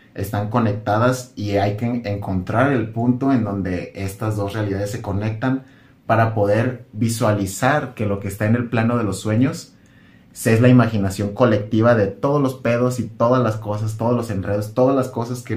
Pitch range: 100-125 Hz